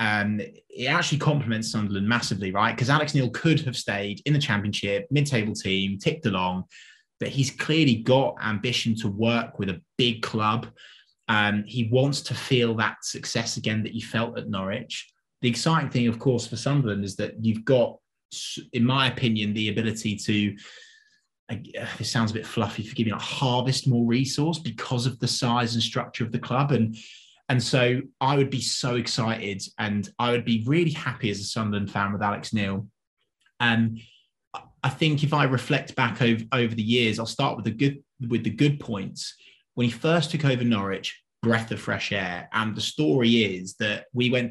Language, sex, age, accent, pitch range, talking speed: English, male, 20-39, British, 105-130 Hz, 190 wpm